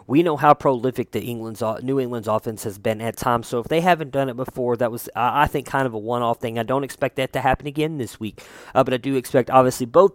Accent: American